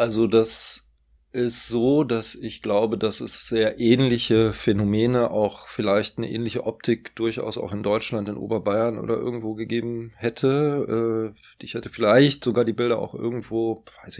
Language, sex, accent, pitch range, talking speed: German, male, German, 110-125 Hz, 150 wpm